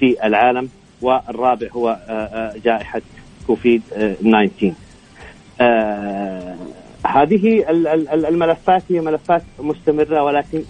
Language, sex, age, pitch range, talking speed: Arabic, male, 40-59, 110-140 Hz, 75 wpm